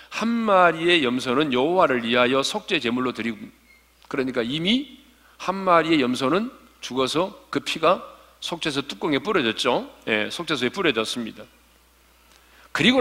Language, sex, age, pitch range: Korean, male, 40-59, 120-180 Hz